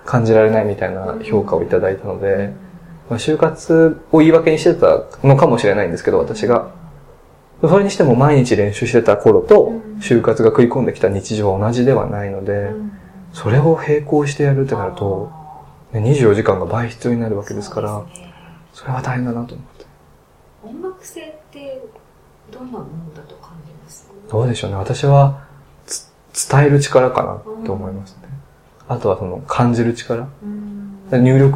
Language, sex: Japanese, male